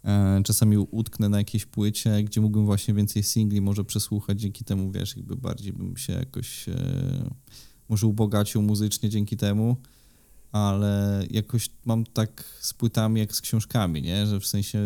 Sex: male